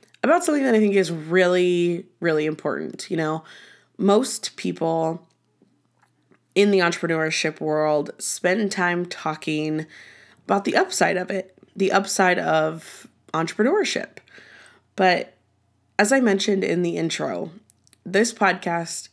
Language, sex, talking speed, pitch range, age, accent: English, female, 120 wpm, 155-200 Hz, 20-39, American